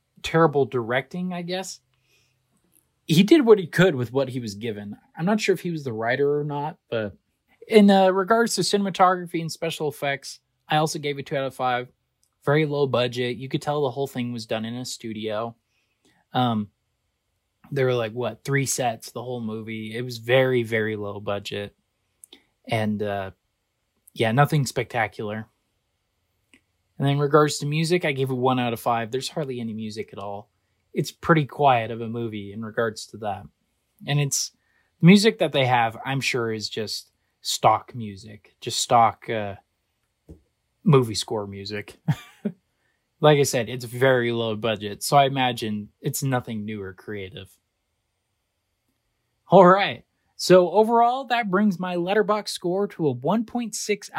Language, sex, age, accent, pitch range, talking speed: English, male, 20-39, American, 110-155 Hz, 165 wpm